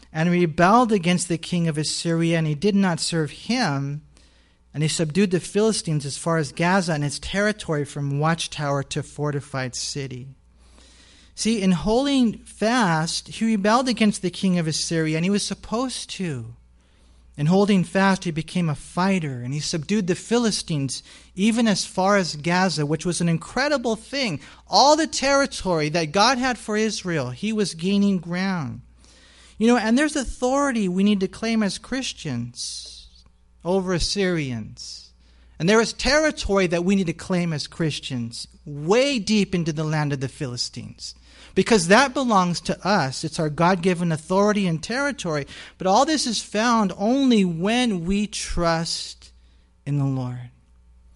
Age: 40-59